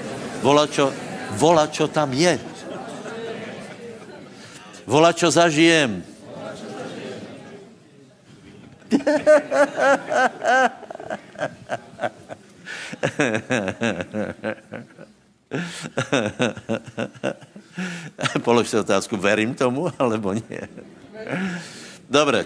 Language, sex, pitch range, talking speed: Slovak, male, 105-150 Hz, 40 wpm